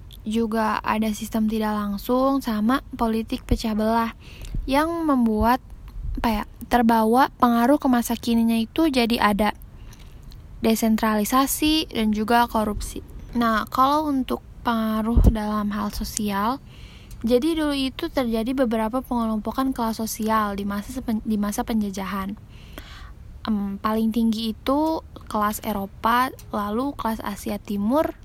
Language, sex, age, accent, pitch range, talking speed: Indonesian, female, 10-29, native, 215-250 Hz, 115 wpm